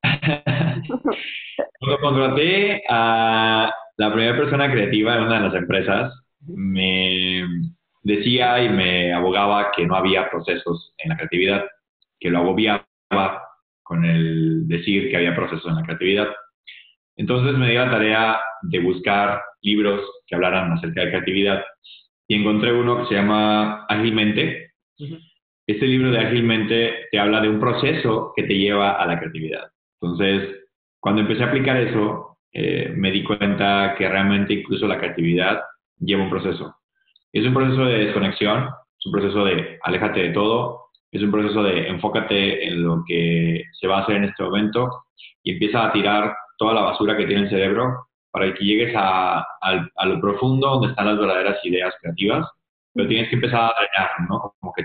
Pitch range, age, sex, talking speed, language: 95-120 Hz, 30-49, male, 165 wpm, Spanish